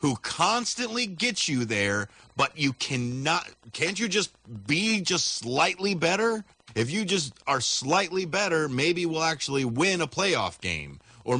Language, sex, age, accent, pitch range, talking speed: English, male, 30-49, American, 125-190 Hz, 155 wpm